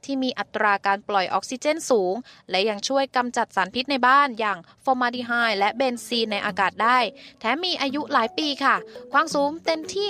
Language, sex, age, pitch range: Thai, female, 20-39, 200-255 Hz